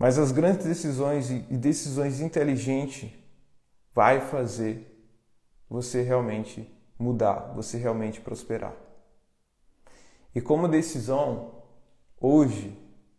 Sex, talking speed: male, 85 wpm